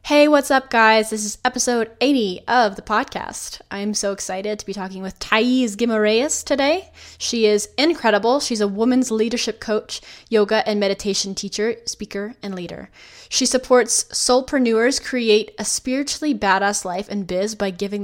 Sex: female